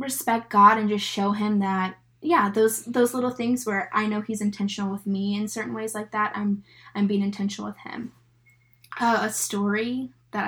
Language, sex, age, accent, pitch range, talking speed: English, female, 10-29, American, 195-220 Hz, 195 wpm